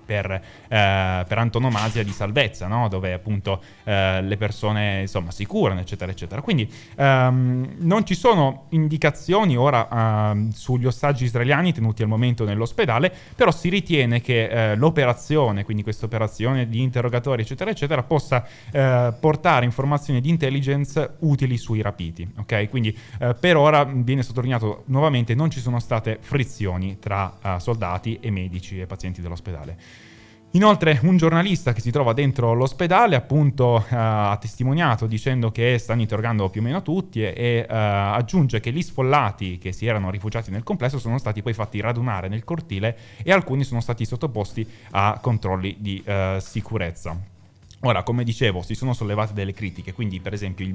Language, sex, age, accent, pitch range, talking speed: Italian, male, 20-39, native, 100-130 Hz, 160 wpm